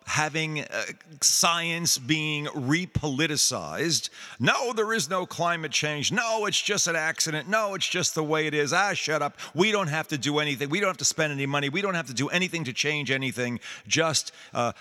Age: 50-69